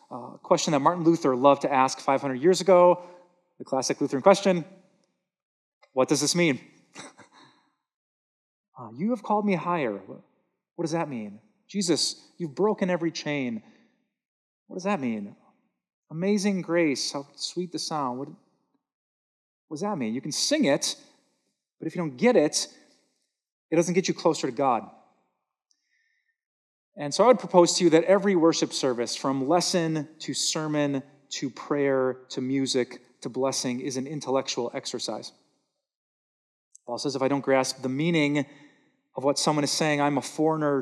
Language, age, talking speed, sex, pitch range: English, 30-49, 155 wpm, male, 135-185 Hz